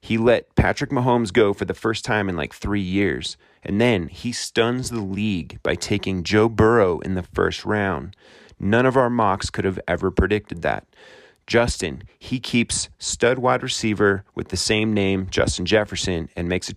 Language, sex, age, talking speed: English, male, 30-49, 185 wpm